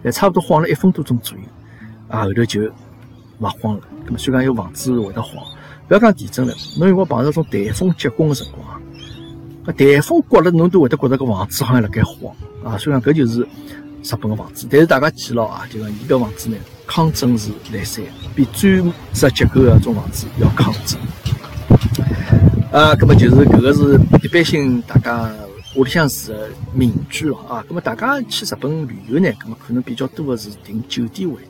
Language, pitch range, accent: Chinese, 110-150 Hz, native